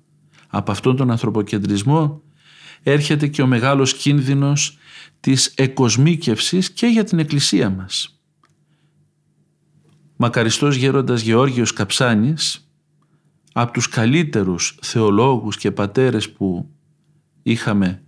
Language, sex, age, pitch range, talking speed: Greek, male, 50-69, 115-155 Hz, 95 wpm